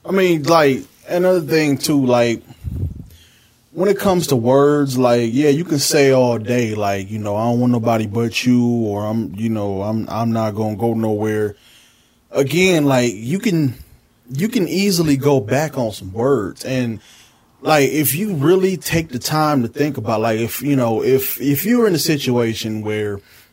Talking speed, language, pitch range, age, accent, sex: 190 wpm, English, 110-140 Hz, 20-39, American, male